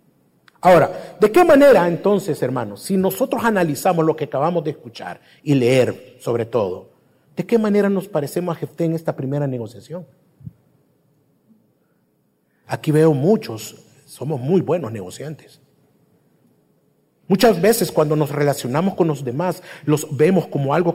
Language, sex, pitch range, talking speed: Spanish, male, 140-195 Hz, 135 wpm